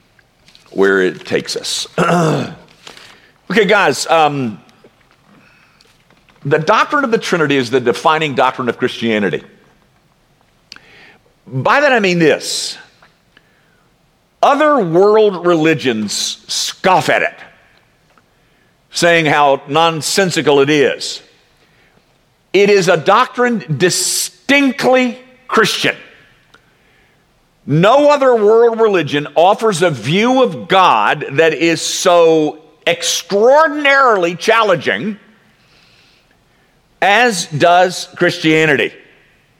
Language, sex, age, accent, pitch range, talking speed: English, male, 50-69, American, 150-215 Hz, 85 wpm